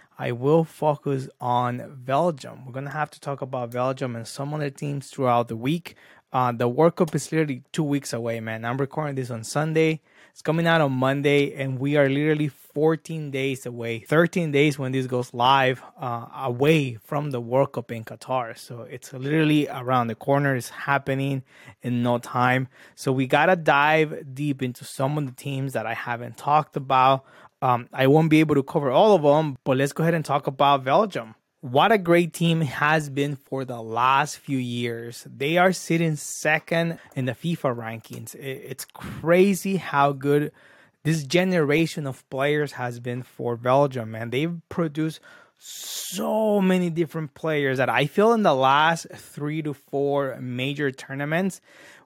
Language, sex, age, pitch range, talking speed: English, male, 20-39, 130-155 Hz, 180 wpm